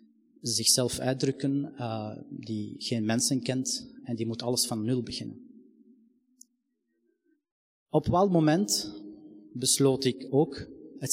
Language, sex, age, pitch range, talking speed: Dutch, male, 30-49, 115-145 Hz, 115 wpm